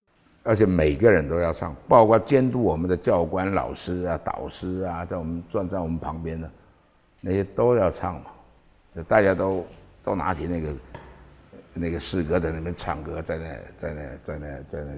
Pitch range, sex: 75-95 Hz, male